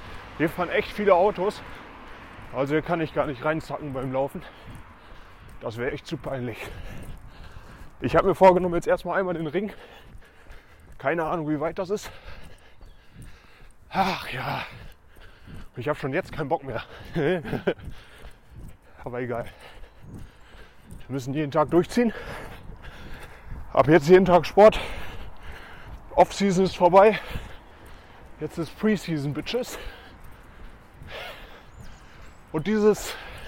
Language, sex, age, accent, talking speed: German, male, 20-39, German, 115 wpm